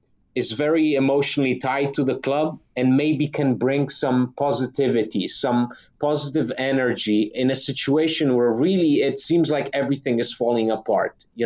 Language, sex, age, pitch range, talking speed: English, male, 30-49, 120-150 Hz, 150 wpm